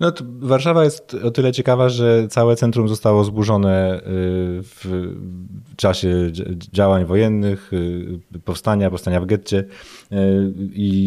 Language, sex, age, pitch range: Polish, male, 30-49, 90-105 Hz